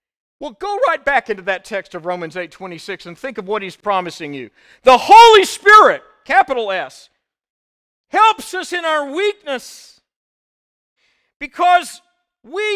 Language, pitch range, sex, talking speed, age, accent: English, 190-285 Hz, male, 140 wpm, 50-69, American